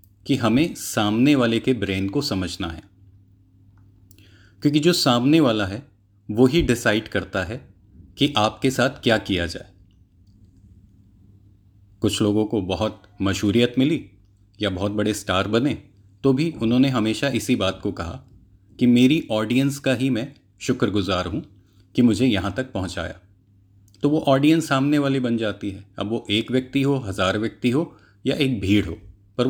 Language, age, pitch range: Hindi, 30-49, 95-120 Hz